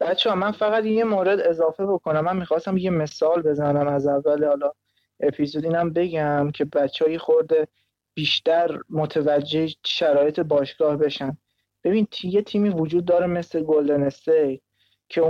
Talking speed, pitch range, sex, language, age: 135 wpm, 145-175 Hz, male, Persian, 20-39